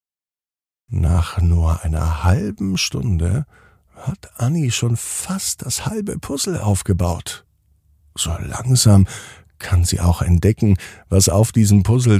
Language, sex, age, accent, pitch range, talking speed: German, male, 50-69, German, 95-120 Hz, 115 wpm